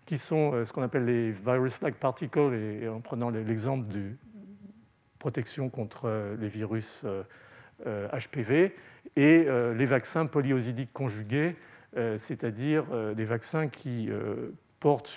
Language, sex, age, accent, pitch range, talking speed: French, male, 40-59, French, 115-140 Hz, 105 wpm